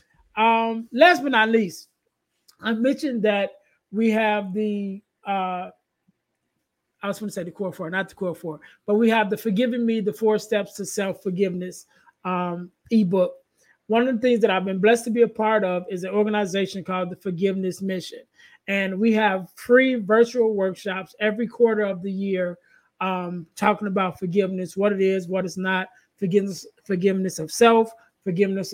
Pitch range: 190-230 Hz